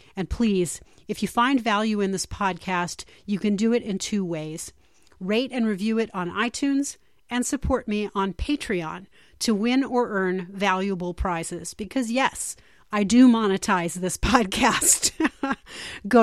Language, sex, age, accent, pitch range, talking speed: English, female, 40-59, American, 190-245 Hz, 150 wpm